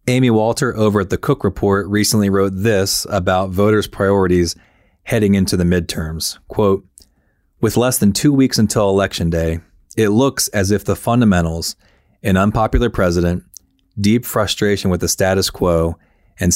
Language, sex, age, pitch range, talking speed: English, male, 30-49, 85-105 Hz, 150 wpm